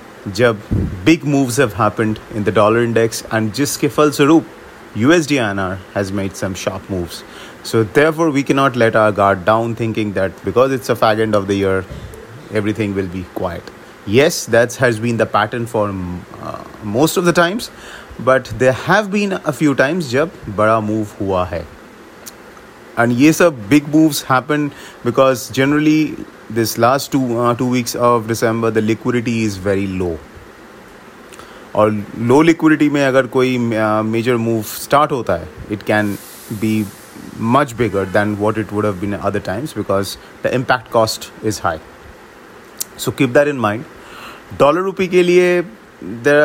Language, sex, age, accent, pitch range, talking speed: English, male, 30-49, Indian, 105-140 Hz, 165 wpm